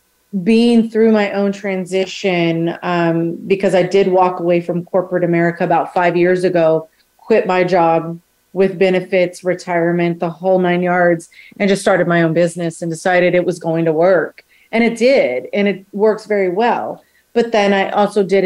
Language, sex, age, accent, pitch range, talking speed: English, female, 30-49, American, 175-200 Hz, 175 wpm